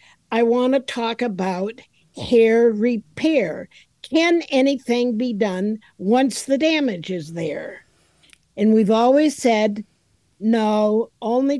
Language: English